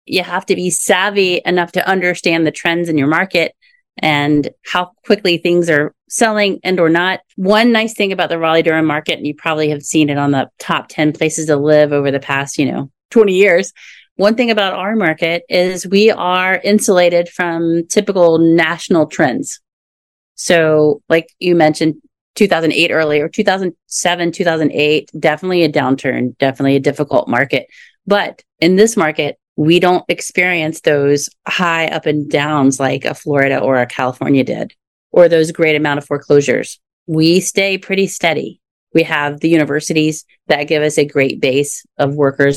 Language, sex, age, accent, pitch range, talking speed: English, female, 30-49, American, 145-180 Hz, 170 wpm